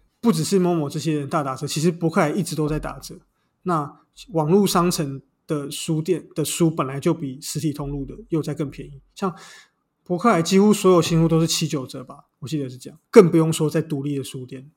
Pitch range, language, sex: 145-170 Hz, Chinese, male